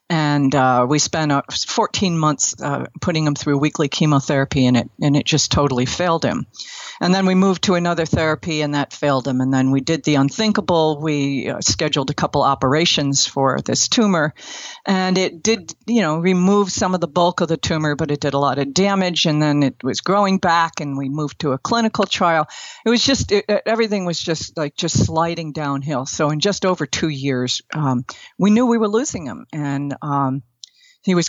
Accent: American